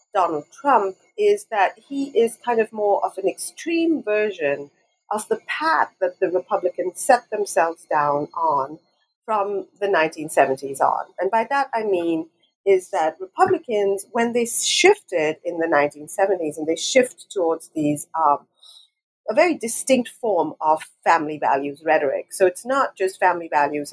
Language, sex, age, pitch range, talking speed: English, female, 40-59, 160-230 Hz, 155 wpm